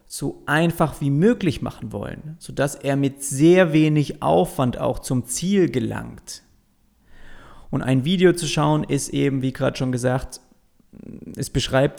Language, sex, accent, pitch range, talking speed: German, male, German, 125-155 Hz, 145 wpm